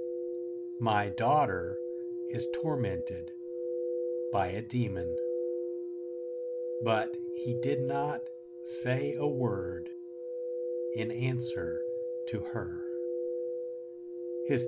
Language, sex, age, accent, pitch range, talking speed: English, male, 60-79, American, 120-170 Hz, 80 wpm